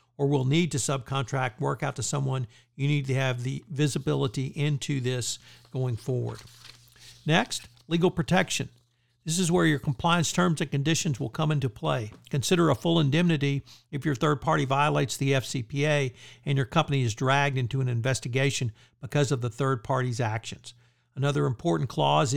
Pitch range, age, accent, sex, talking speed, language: 125-150 Hz, 60-79, American, male, 165 wpm, English